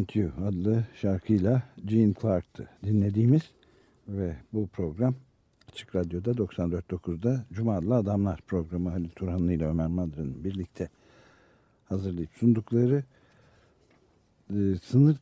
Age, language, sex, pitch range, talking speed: 60-79, Turkish, male, 95-120 Hz, 90 wpm